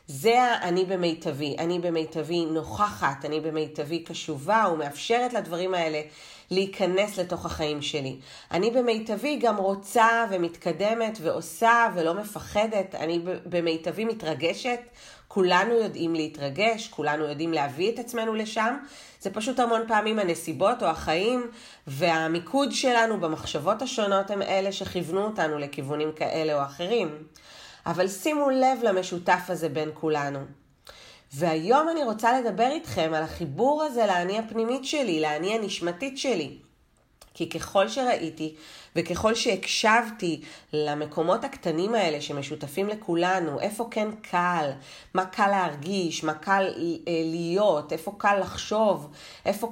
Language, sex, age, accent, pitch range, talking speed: Hebrew, female, 30-49, native, 155-215 Hz, 120 wpm